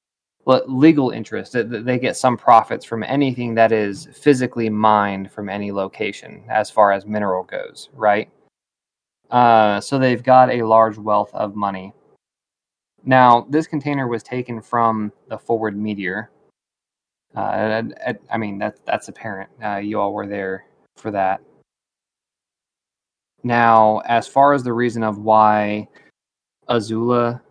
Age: 20-39